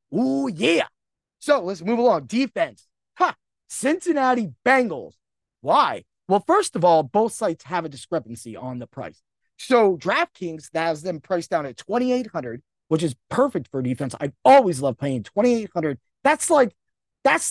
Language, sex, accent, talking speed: English, male, American, 170 wpm